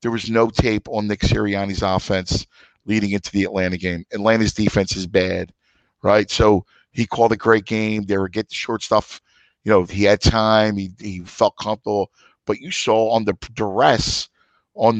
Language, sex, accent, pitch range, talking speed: English, male, American, 100-115 Hz, 185 wpm